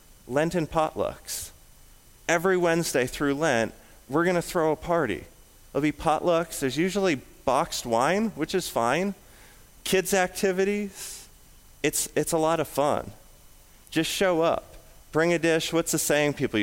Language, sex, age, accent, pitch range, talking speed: English, male, 30-49, American, 125-165 Hz, 150 wpm